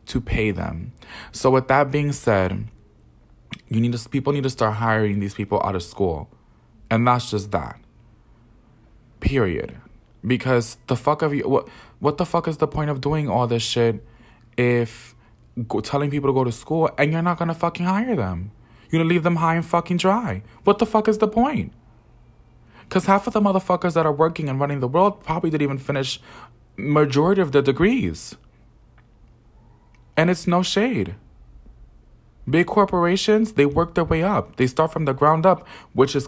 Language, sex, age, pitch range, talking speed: English, male, 20-39, 115-155 Hz, 180 wpm